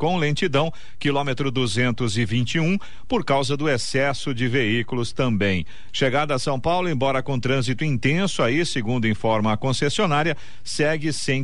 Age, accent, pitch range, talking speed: 50-69, Brazilian, 120-160 Hz, 150 wpm